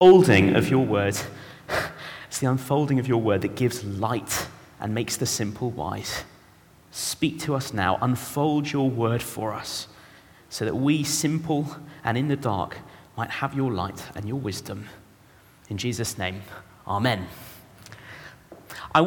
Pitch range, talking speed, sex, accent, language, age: 110-160 Hz, 150 wpm, male, British, English, 30-49